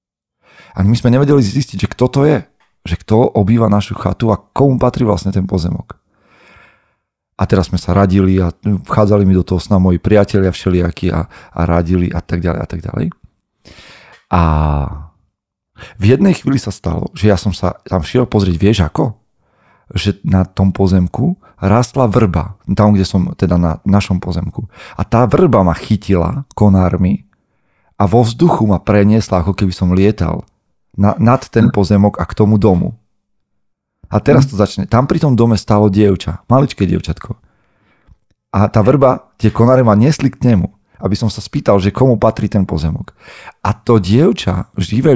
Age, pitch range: 40-59, 95-115 Hz